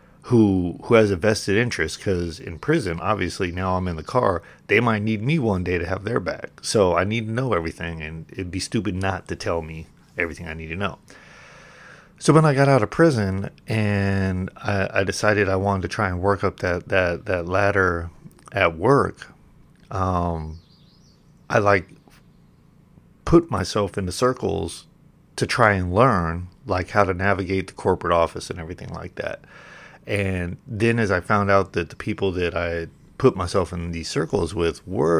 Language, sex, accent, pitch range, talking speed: English, male, American, 90-115 Hz, 185 wpm